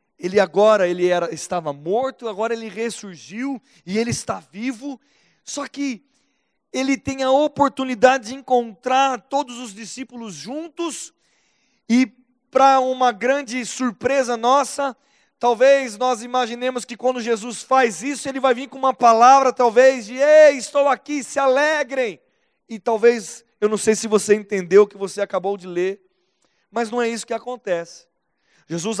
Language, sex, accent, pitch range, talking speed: Portuguese, male, Brazilian, 205-255 Hz, 145 wpm